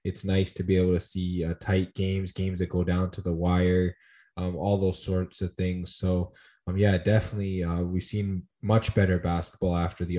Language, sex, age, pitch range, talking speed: English, male, 20-39, 90-100 Hz, 205 wpm